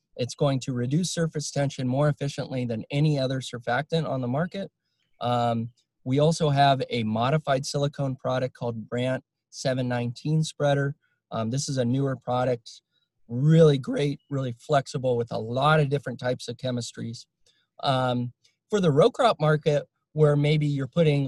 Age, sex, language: 20-39, male, English